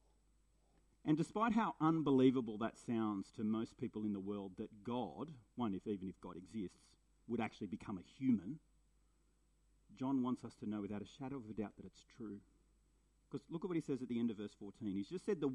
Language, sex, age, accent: English, male, 40-59, Australian